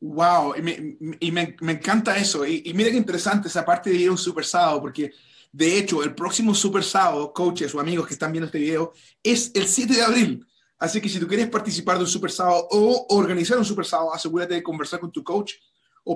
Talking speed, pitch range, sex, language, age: 235 wpm, 160-205 Hz, male, Spanish, 30-49